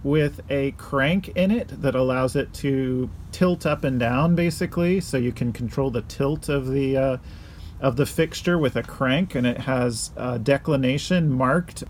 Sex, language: male, English